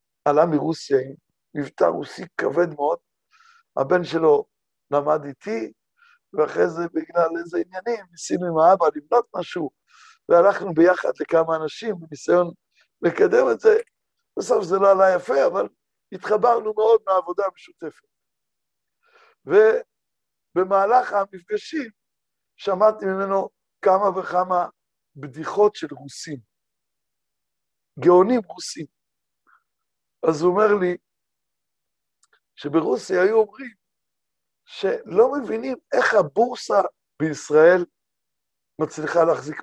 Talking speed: 95 wpm